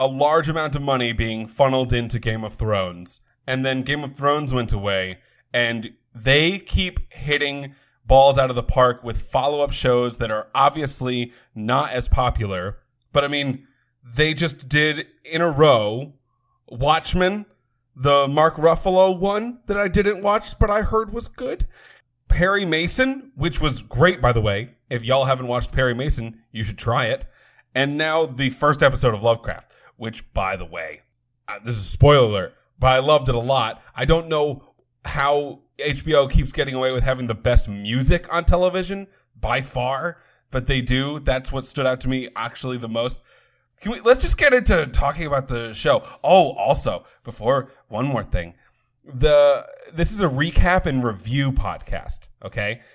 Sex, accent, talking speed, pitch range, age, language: male, American, 175 wpm, 120-150 Hz, 30-49, English